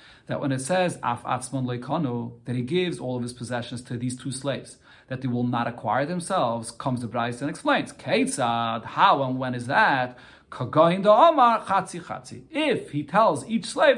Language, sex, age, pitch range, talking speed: English, male, 40-59, 130-180 Hz, 175 wpm